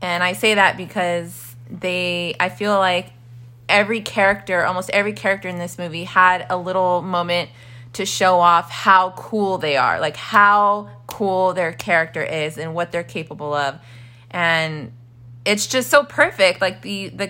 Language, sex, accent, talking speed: English, female, American, 165 wpm